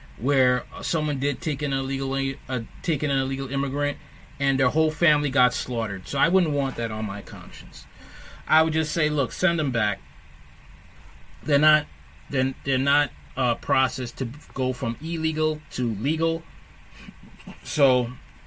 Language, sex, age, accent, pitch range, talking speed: English, male, 30-49, American, 125-165 Hz, 150 wpm